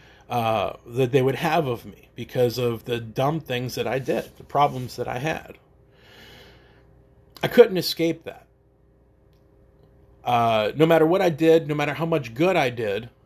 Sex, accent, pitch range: male, American, 120-155 Hz